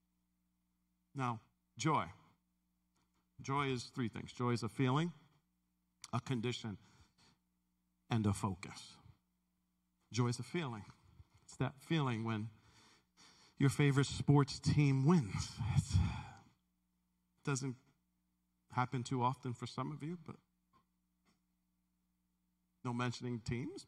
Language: English